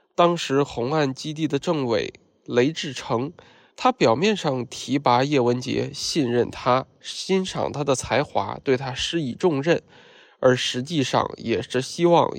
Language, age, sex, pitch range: Chinese, 20-39, male, 125-170 Hz